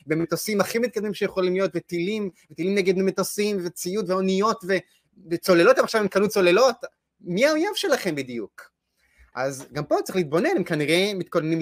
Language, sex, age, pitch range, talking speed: Hebrew, male, 20-39, 170-215 Hz, 145 wpm